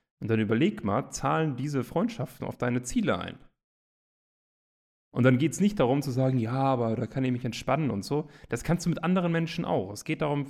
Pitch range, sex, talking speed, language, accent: 110-140 Hz, male, 215 wpm, German, German